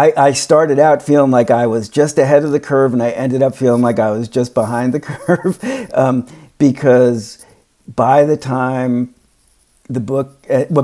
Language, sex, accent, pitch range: English, male, American, 115-130 Hz